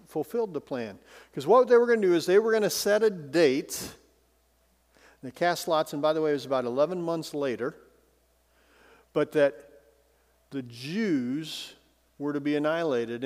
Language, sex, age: English, male, 50-69